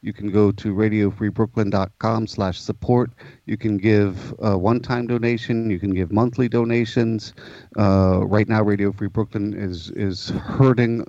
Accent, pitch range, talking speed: American, 100-115 Hz, 145 wpm